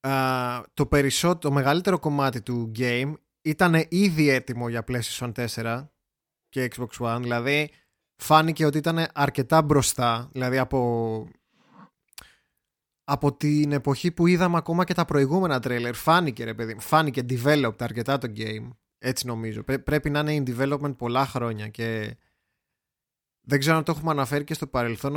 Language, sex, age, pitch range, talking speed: Greek, male, 20-39, 120-150 Hz, 140 wpm